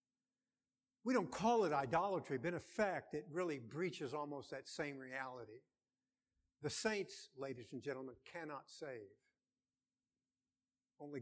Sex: male